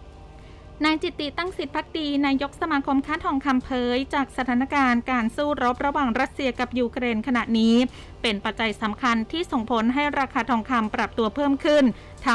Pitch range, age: 230-275 Hz, 20-39